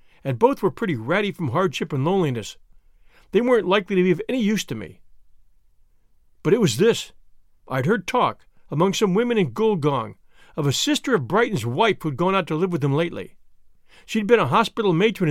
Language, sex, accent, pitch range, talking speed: English, male, American, 130-210 Hz, 195 wpm